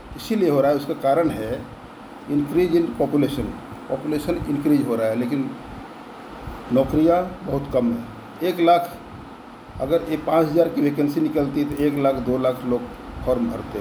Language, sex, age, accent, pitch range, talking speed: Hindi, male, 50-69, native, 135-170 Hz, 165 wpm